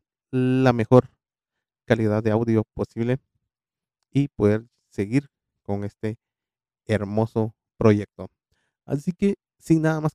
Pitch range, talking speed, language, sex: 110-145 Hz, 105 wpm, Spanish, male